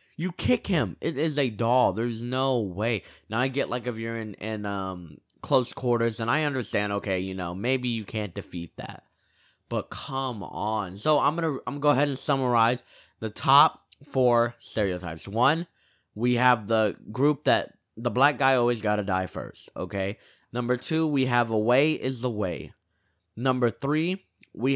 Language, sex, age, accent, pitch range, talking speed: English, male, 20-39, American, 105-135 Hz, 185 wpm